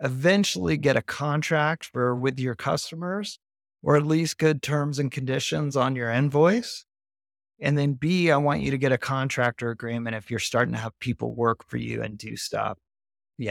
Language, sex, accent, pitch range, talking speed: English, male, American, 120-150 Hz, 185 wpm